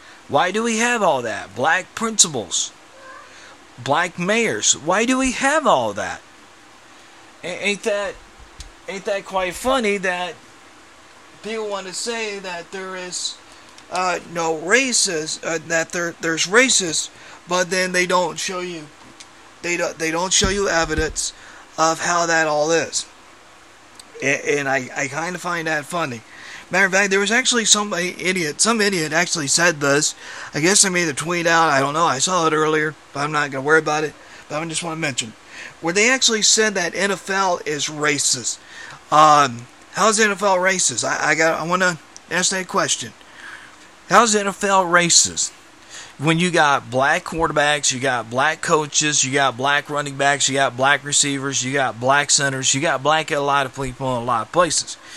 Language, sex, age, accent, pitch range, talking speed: English, male, 30-49, American, 145-190 Hz, 180 wpm